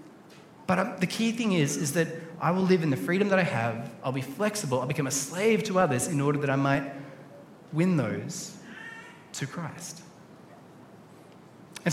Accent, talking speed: Australian, 175 wpm